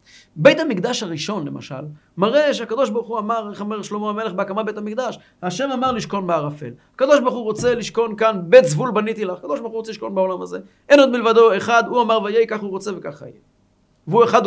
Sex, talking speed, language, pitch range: male, 210 wpm, Hebrew, 180-270 Hz